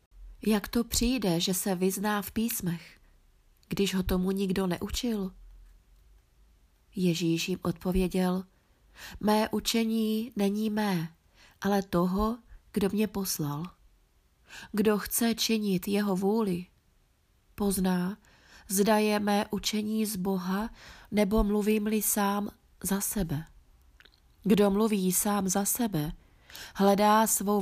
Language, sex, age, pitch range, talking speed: Czech, female, 20-39, 180-210 Hz, 105 wpm